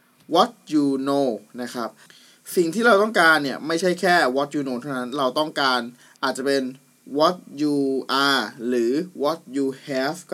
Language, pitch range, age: Thai, 130-155 Hz, 20-39